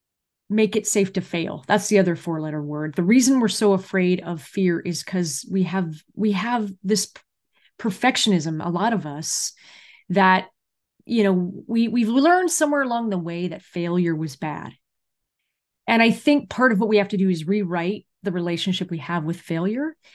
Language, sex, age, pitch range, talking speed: English, female, 30-49, 180-240 Hz, 185 wpm